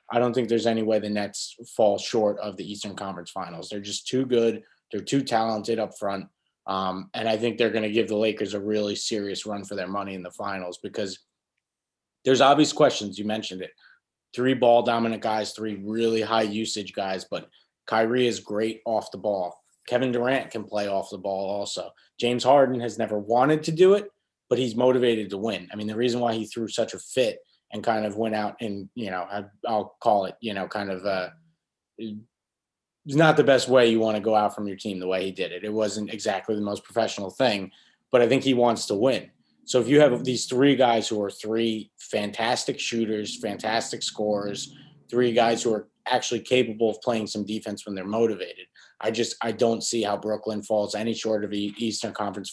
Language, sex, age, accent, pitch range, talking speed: English, male, 20-39, American, 100-120 Hz, 215 wpm